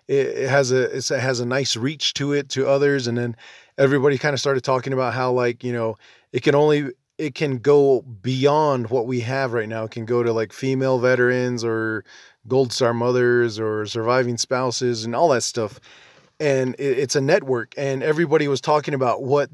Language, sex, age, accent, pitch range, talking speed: English, male, 20-39, American, 120-140 Hz, 195 wpm